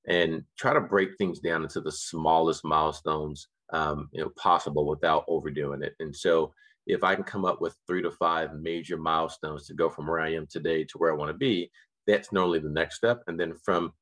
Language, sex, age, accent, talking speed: English, male, 40-59, American, 210 wpm